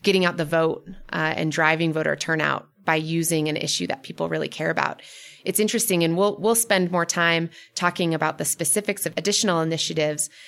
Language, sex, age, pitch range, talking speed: English, female, 20-39, 160-185 Hz, 180 wpm